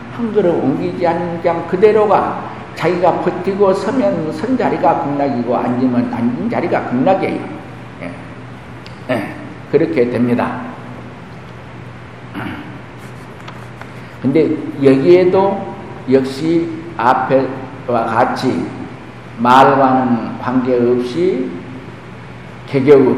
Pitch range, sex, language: 120-185 Hz, male, Korean